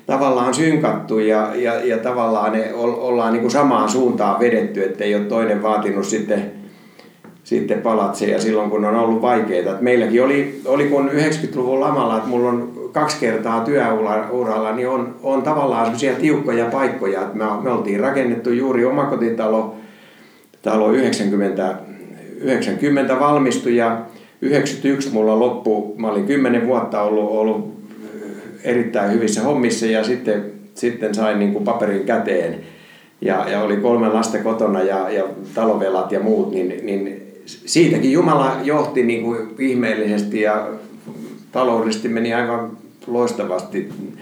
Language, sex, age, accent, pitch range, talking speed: Finnish, male, 60-79, native, 105-125 Hz, 140 wpm